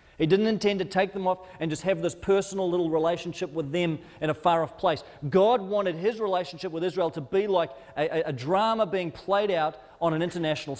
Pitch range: 140-180 Hz